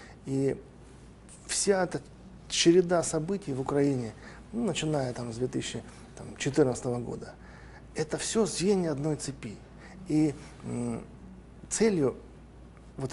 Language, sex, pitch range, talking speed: Russian, male, 140-185 Hz, 90 wpm